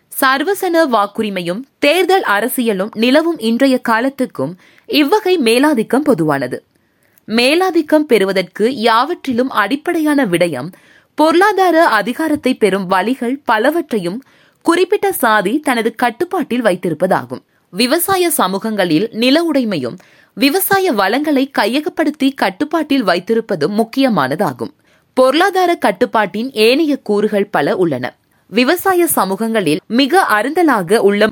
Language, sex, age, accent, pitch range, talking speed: Tamil, female, 20-39, native, 215-315 Hz, 90 wpm